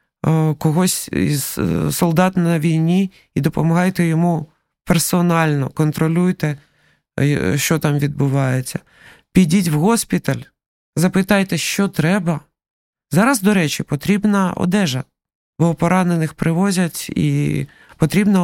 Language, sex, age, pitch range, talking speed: Ukrainian, male, 20-39, 150-185 Hz, 95 wpm